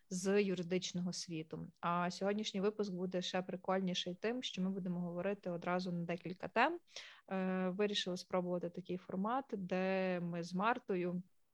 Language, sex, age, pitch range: Ukrainian, female, 20-39, 180-200 Hz